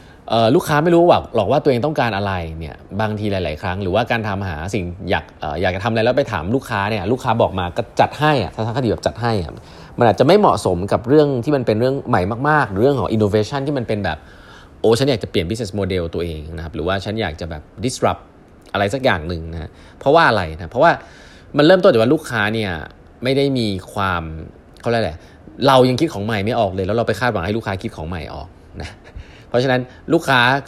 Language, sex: Thai, male